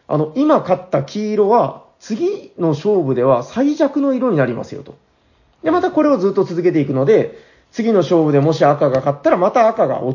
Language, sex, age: Japanese, male, 40-59